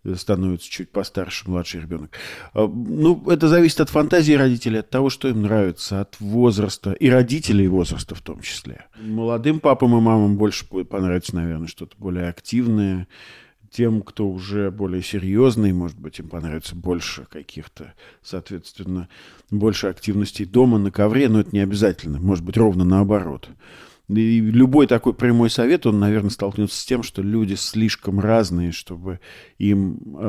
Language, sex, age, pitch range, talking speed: Russian, male, 40-59, 95-110 Hz, 145 wpm